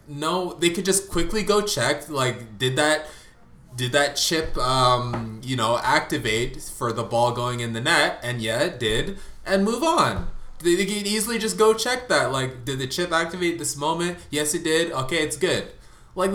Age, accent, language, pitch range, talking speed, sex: 20-39, American, English, 130-205 Hz, 195 wpm, male